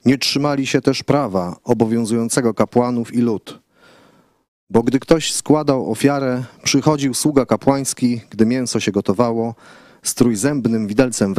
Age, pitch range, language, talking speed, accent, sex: 30-49, 115-140 Hz, Polish, 130 wpm, native, male